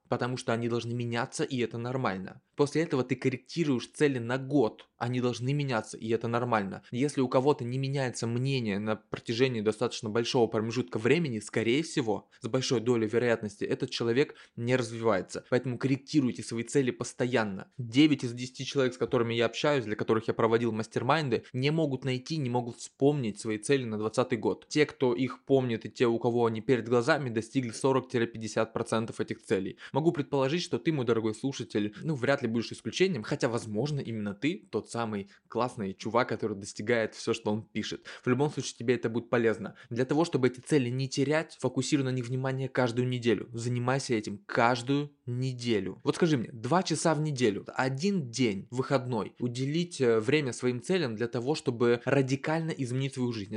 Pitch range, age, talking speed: 115-135 Hz, 20-39, 175 wpm